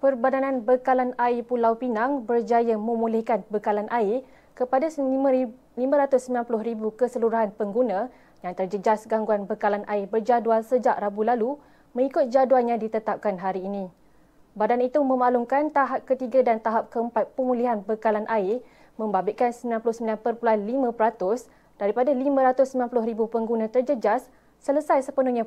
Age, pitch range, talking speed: 20-39, 210-255 Hz, 110 wpm